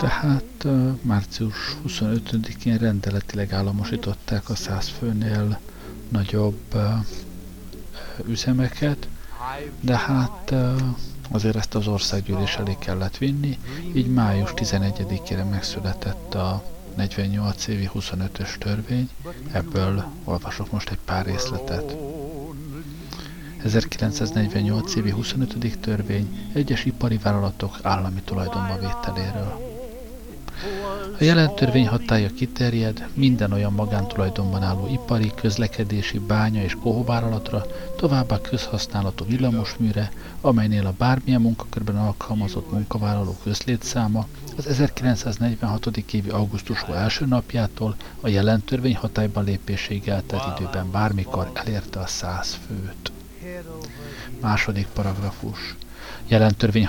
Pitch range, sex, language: 100-125 Hz, male, Hungarian